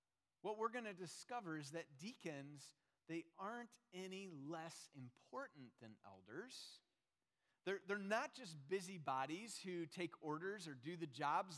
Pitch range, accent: 155-200 Hz, American